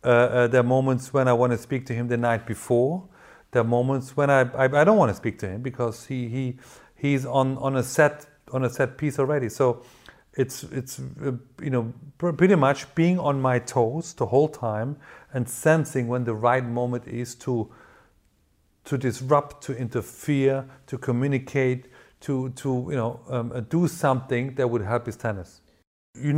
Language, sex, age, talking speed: English, male, 40-59, 185 wpm